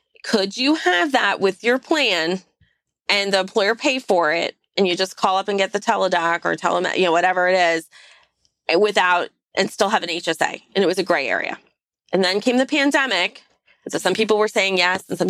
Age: 30-49